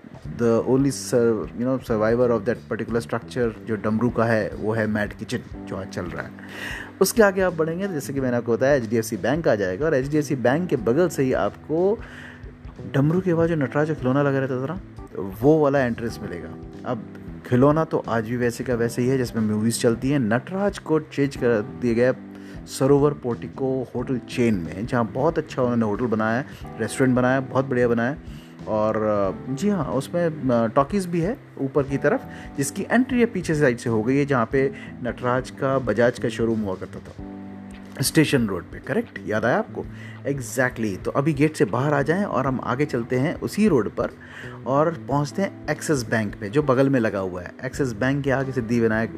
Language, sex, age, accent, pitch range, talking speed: Hindi, male, 30-49, native, 115-145 Hz, 205 wpm